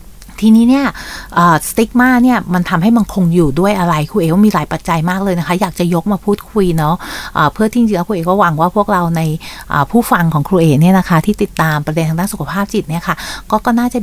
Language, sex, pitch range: Thai, female, 165-205 Hz